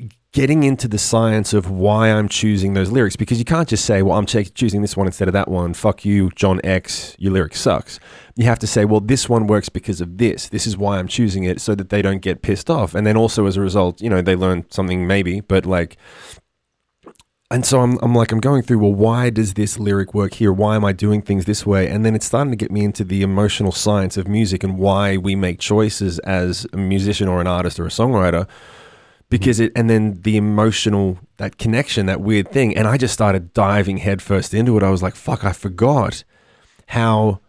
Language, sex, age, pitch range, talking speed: English, male, 20-39, 95-110 Hz, 230 wpm